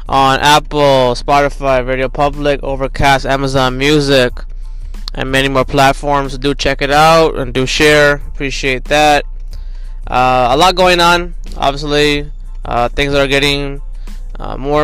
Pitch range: 125-145 Hz